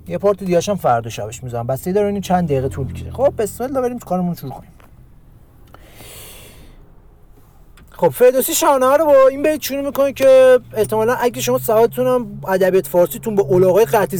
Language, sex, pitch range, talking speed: Persian, male, 165-235 Hz, 155 wpm